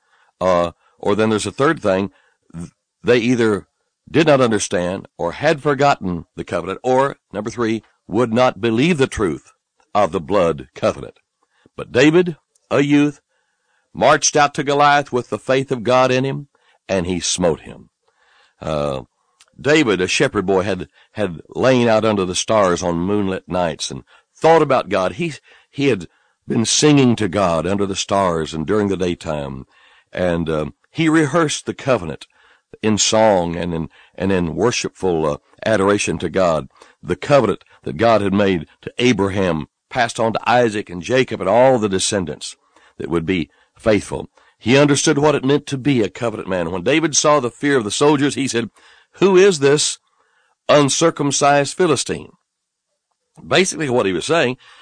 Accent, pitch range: American, 95-145 Hz